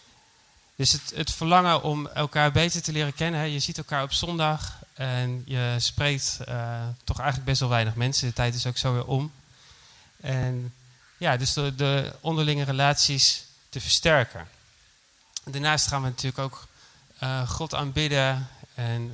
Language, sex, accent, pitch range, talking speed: Dutch, male, Dutch, 125-145 Hz, 155 wpm